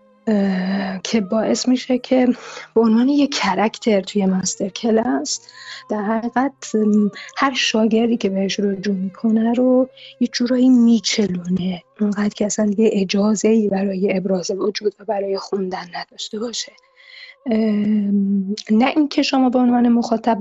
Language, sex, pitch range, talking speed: Persian, female, 205-240 Hz, 125 wpm